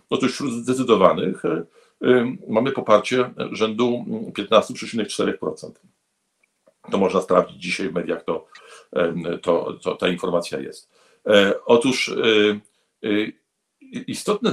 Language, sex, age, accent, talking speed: Polish, male, 50-69, native, 80 wpm